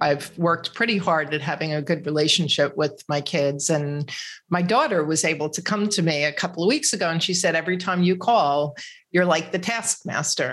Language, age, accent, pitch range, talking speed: English, 40-59, American, 160-195 Hz, 210 wpm